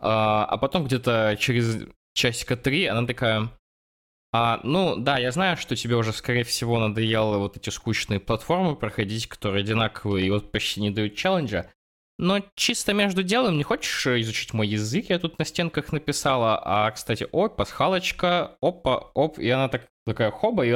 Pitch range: 105-130 Hz